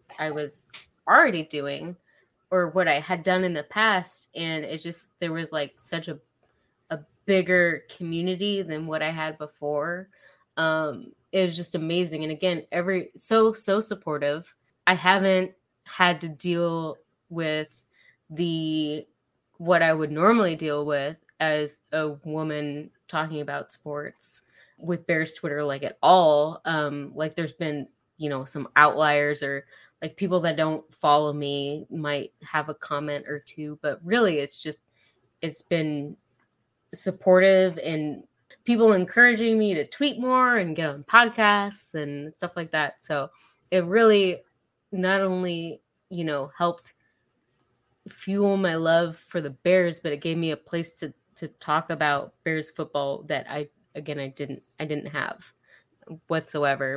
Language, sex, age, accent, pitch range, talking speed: English, female, 20-39, American, 150-180 Hz, 150 wpm